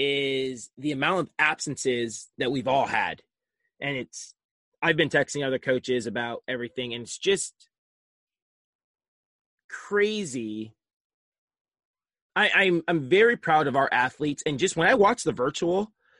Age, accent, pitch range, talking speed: 20-39, American, 135-180 Hz, 135 wpm